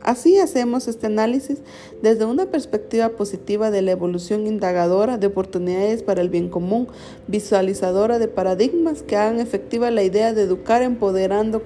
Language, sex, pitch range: Spanish, female, 190-240 Hz